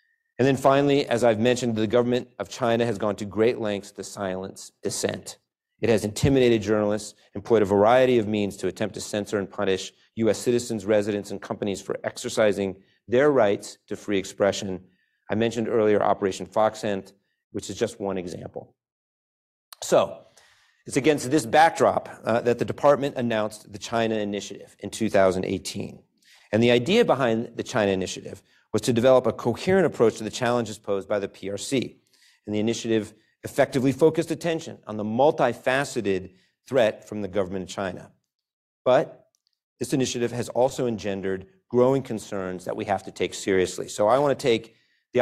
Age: 40-59